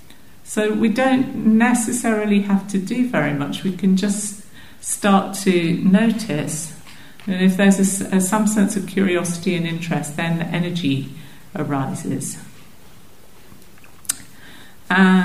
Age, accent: 50-69, British